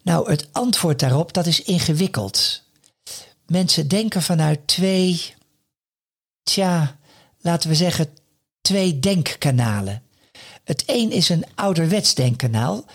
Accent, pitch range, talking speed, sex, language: Dutch, 135-190 Hz, 100 wpm, male, Dutch